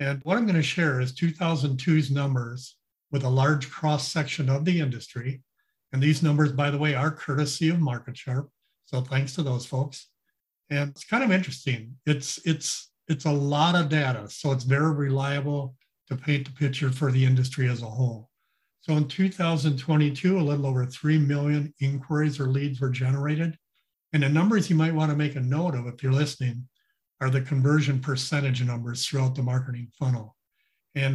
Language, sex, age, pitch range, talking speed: English, male, 50-69, 130-155 Hz, 180 wpm